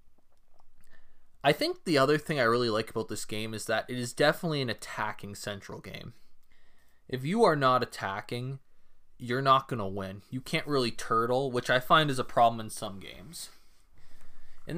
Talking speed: 180 wpm